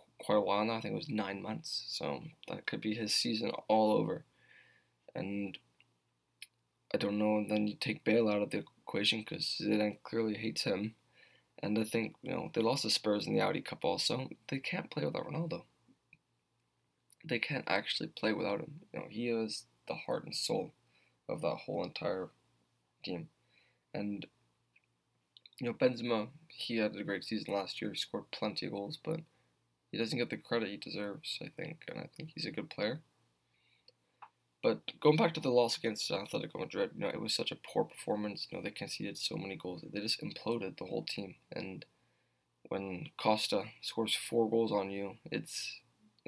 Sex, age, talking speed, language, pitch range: male, 20-39, 190 wpm, English, 105-120 Hz